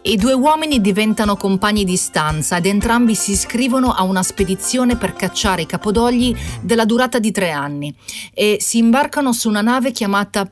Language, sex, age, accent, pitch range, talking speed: Italian, female, 30-49, native, 170-225 Hz, 170 wpm